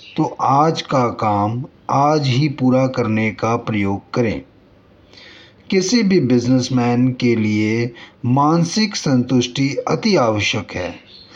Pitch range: 115-165 Hz